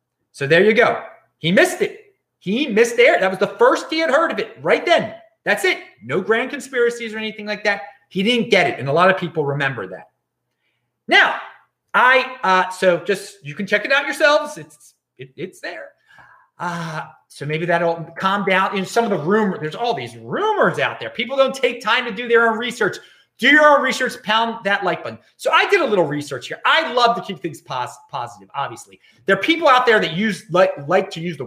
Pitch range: 170-255 Hz